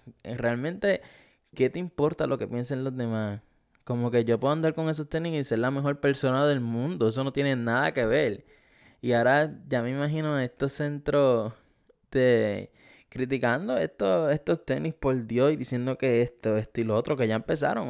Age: 10-29